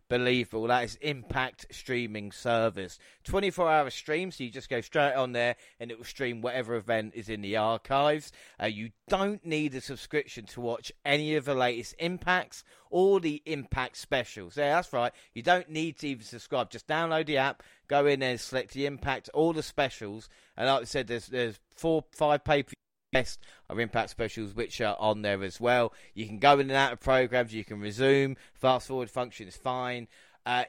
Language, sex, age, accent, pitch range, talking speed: English, male, 30-49, British, 110-140 Hz, 195 wpm